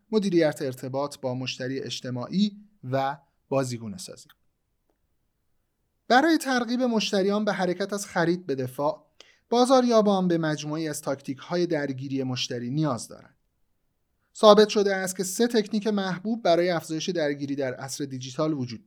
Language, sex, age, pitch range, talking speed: Persian, male, 30-49, 135-200 Hz, 130 wpm